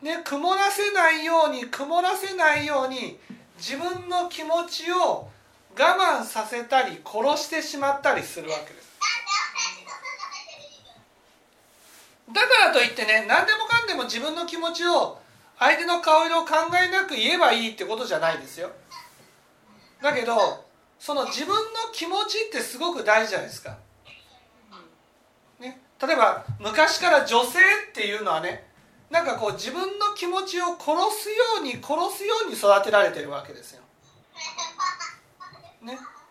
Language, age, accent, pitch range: Japanese, 40-59, native, 205-340 Hz